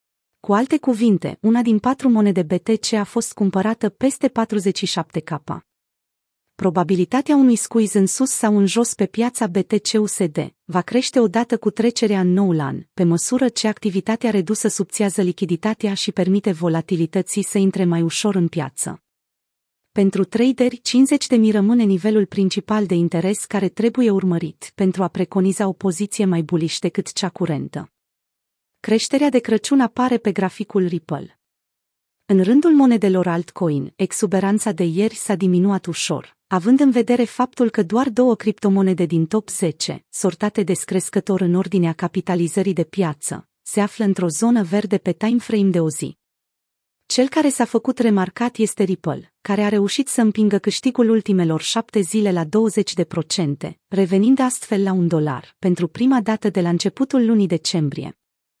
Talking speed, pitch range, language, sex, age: 150 wpm, 180-225 Hz, Romanian, female, 30-49